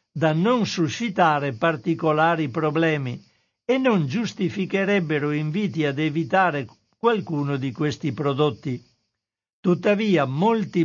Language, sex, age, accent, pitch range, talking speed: Italian, male, 60-79, native, 150-190 Hz, 95 wpm